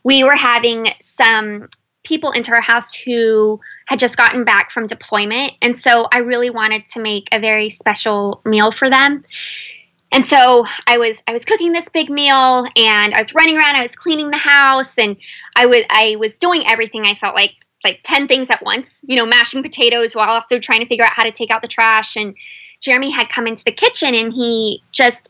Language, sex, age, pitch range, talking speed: English, female, 20-39, 225-290 Hz, 210 wpm